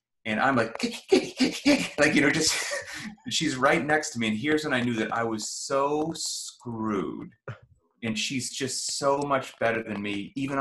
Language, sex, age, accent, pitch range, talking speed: English, male, 30-49, American, 115-190 Hz, 175 wpm